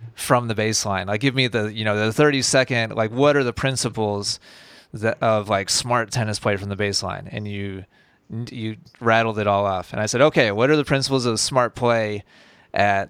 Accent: American